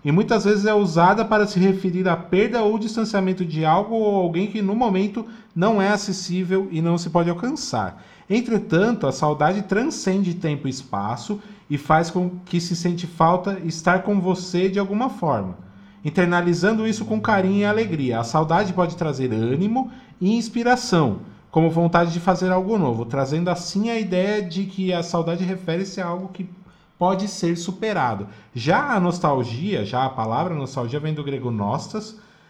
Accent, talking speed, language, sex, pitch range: Brazilian, 170 wpm, Portuguese, male, 155-210 Hz